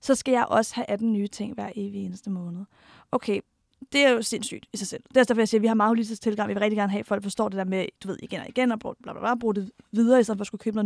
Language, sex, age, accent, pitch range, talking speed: Danish, female, 30-49, native, 215-260 Hz, 330 wpm